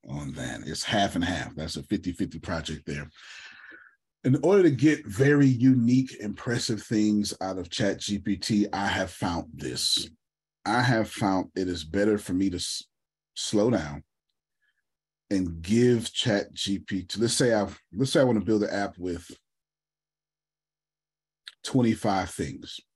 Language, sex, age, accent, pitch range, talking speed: English, male, 30-49, American, 90-115 Hz, 155 wpm